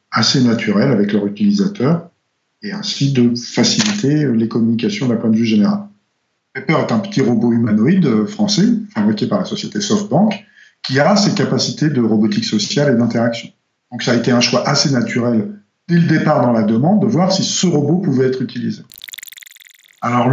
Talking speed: 175 wpm